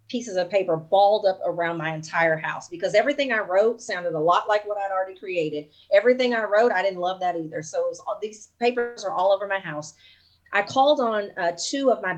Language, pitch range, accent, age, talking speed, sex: English, 170-220 Hz, American, 30-49, 215 wpm, female